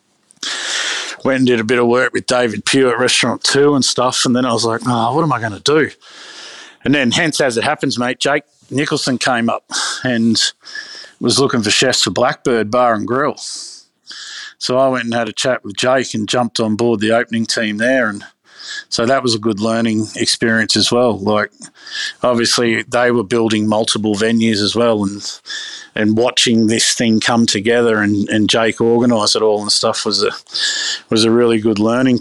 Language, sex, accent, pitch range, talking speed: English, male, Australian, 115-135 Hz, 195 wpm